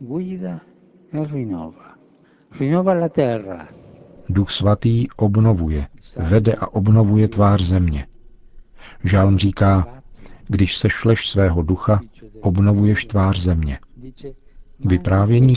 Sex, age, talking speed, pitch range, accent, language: male, 50-69, 70 wpm, 90-105 Hz, native, Czech